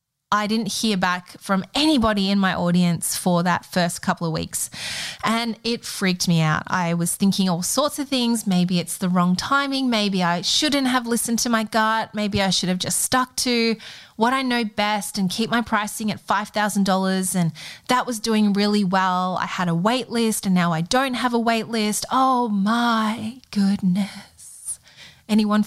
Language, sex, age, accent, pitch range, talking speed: English, female, 20-39, Australian, 180-220 Hz, 185 wpm